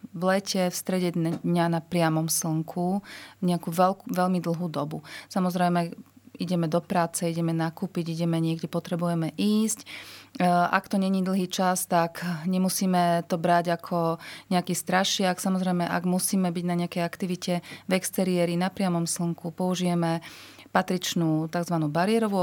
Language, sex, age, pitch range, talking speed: Slovak, female, 30-49, 165-190 Hz, 135 wpm